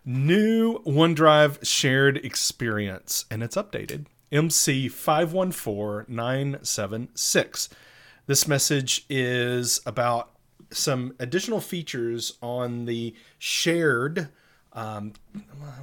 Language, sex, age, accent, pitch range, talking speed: English, male, 30-49, American, 115-145 Hz, 75 wpm